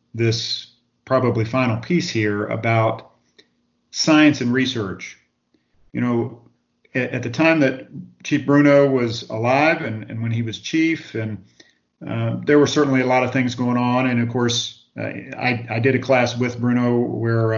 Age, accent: 50-69, American